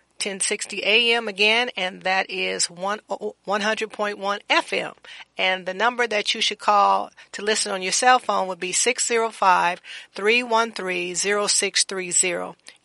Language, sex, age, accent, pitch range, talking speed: English, female, 40-59, American, 185-210 Hz, 110 wpm